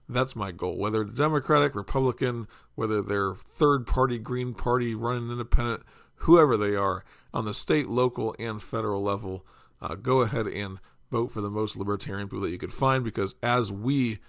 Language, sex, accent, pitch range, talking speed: English, male, American, 100-125 Hz, 170 wpm